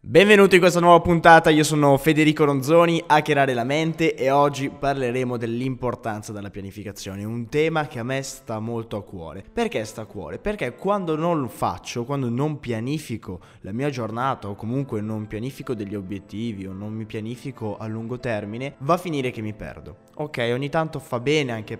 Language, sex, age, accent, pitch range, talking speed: Italian, male, 20-39, native, 105-140 Hz, 185 wpm